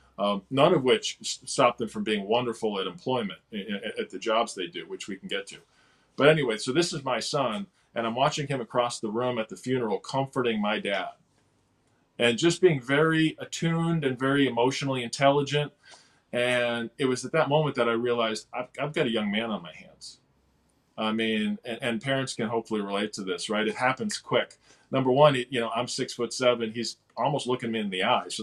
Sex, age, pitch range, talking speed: male, 40-59, 110-135 Hz, 210 wpm